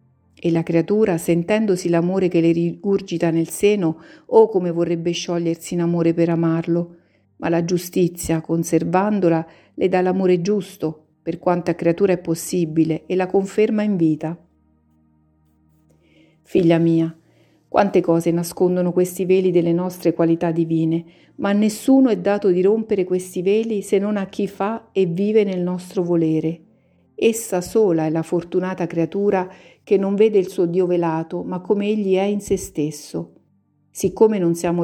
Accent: native